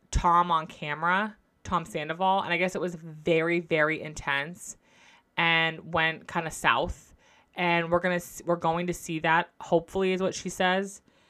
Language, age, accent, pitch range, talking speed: English, 20-39, American, 165-185 Hz, 170 wpm